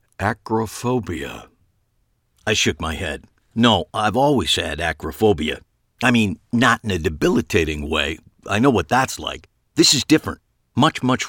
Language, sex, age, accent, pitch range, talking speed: English, male, 50-69, American, 85-120 Hz, 145 wpm